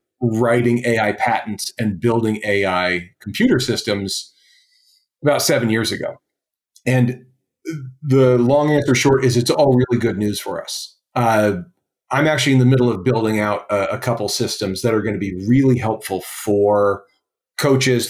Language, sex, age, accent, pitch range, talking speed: English, male, 40-59, American, 110-140 Hz, 155 wpm